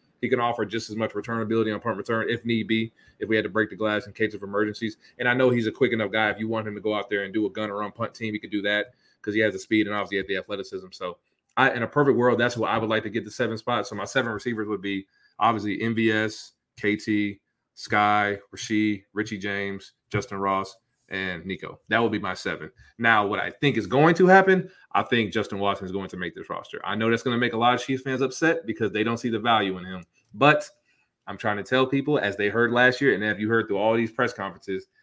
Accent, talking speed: American, 270 wpm